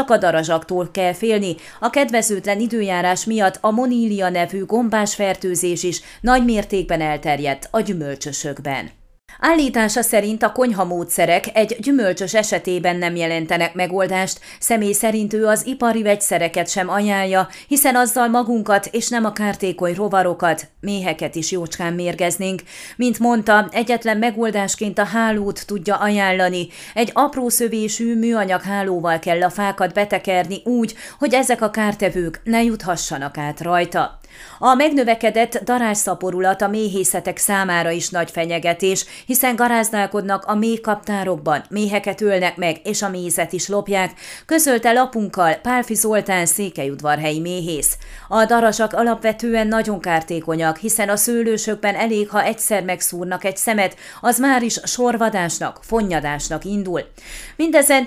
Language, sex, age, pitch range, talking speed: Hungarian, female, 30-49, 180-225 Hz, 125 wpm